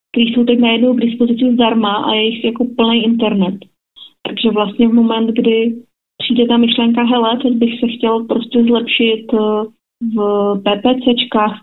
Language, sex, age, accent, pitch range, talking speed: Czech, female, 30-49, native, 210-240 Hz, 155 wpm